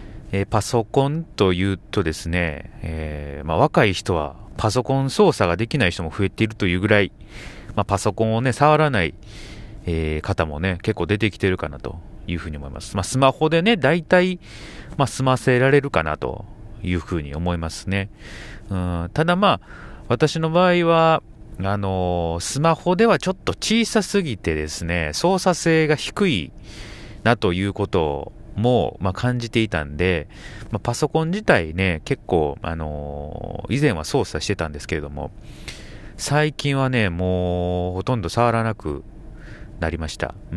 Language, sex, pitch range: Japanese, male, 90-125 Hz